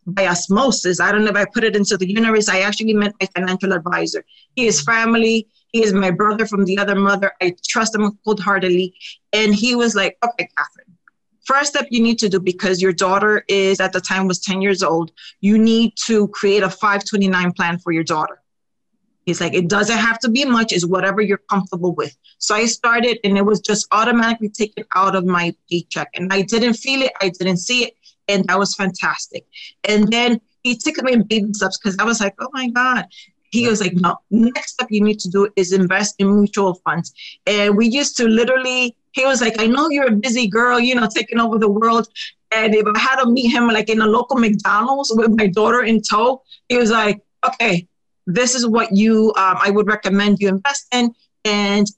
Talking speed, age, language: 215 wpm, 30-49, English